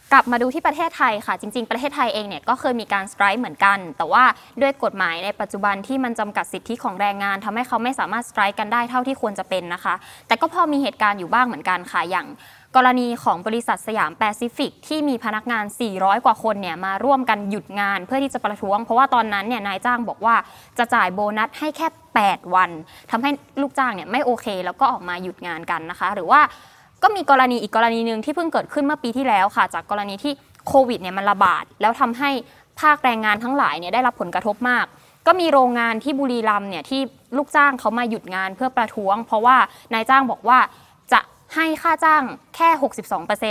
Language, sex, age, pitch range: Thai, female, 20-39, 205-270 Hz